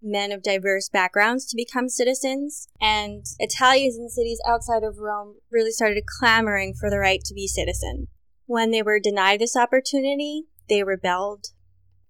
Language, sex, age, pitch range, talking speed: English, female, 20-39, 195-235 Hz, 155 wpm